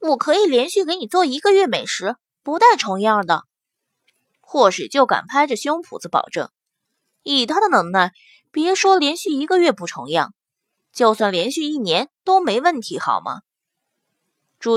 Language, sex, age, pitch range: Chinese, female, 20-39, 250-380 Hz